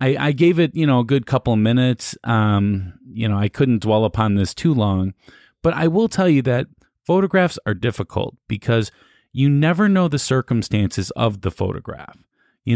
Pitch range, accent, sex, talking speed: 105-145 Hz, American, male, 185 wpm